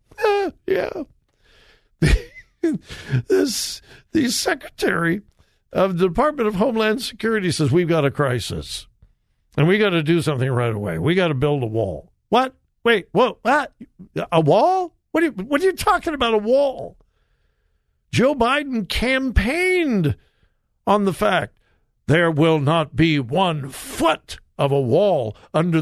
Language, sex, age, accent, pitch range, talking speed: English, male, 60-79, American, 135-225 Hz, 140 wpm